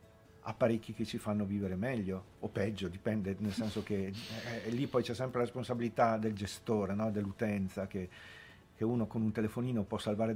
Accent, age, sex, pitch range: native, 50-69, male, 100-115 Hz